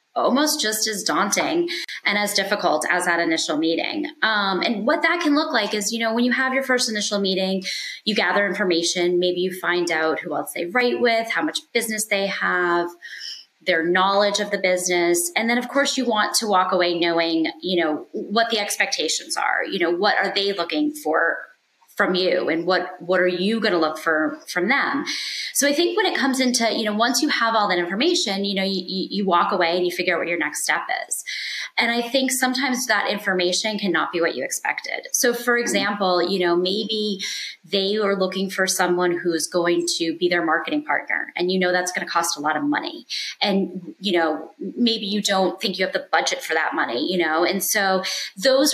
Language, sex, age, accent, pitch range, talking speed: English, female, 20-39, American, 175-230 Hz, 215 wpm